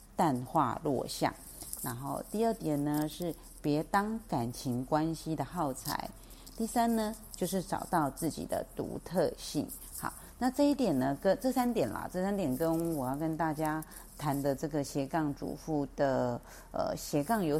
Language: Chinese